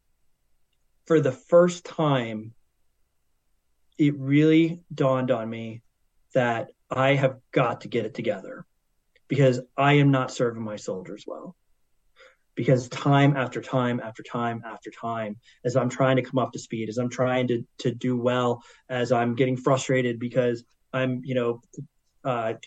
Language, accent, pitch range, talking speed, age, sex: English, American, 115-135 Hz, 150 wpm, 30-49, male